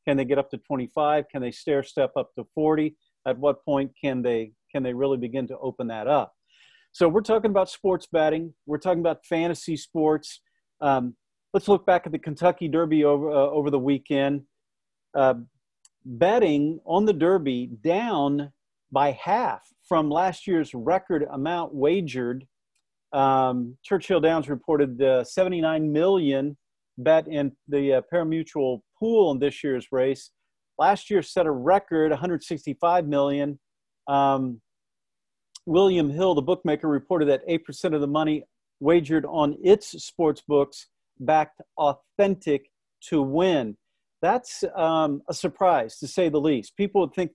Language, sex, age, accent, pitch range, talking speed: English, male, 50-69, American, 140-170 Hz, 150 wpm